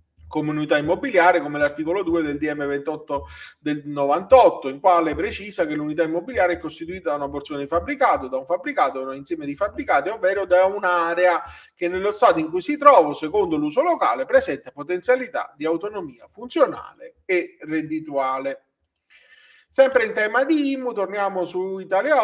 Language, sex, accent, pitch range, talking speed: Italian, male, native, 155-225 Hz, 160 wpm